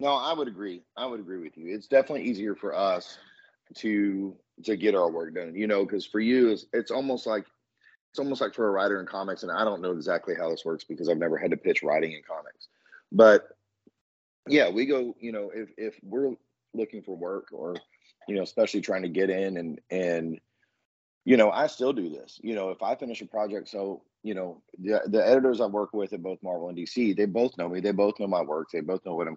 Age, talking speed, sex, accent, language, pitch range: 30-49, 240 wpm, male, American, English, 90-110 Hz